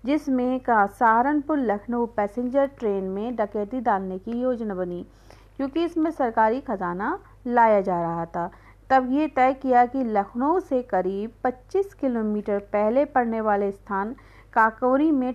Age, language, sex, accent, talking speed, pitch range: 40-59, Hindi, female, native, 140 wpm, 210-255 Hz